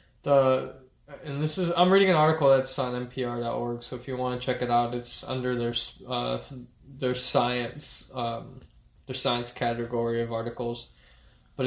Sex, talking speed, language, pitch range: male, 160 wpm, English, 125-140 Hz